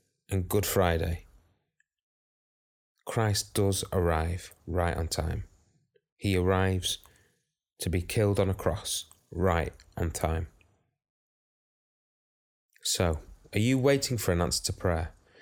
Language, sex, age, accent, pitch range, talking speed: English, male, 30-49, British, 85-105 Hz, 115 wpm